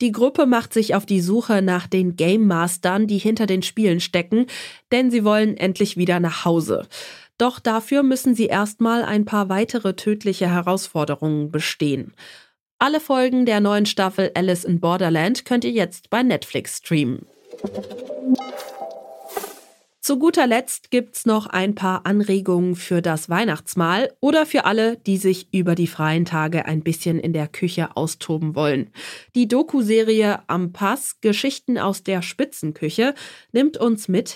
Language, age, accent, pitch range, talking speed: German, 30-49, German, 175-240 Hz, 150 wpm